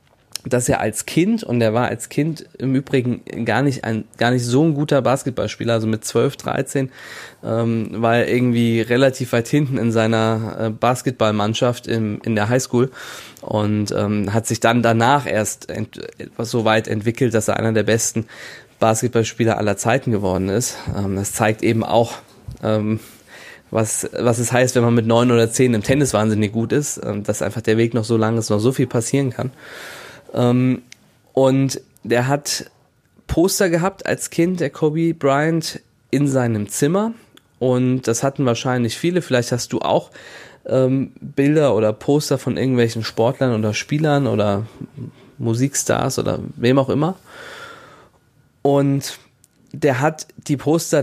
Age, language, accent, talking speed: 20-39, German, German, 160 wpm